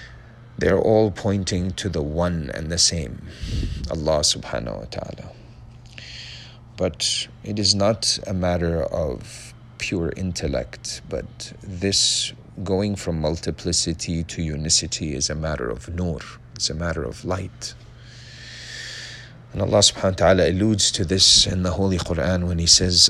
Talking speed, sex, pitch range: 140 wpm, male, 80-110 Hz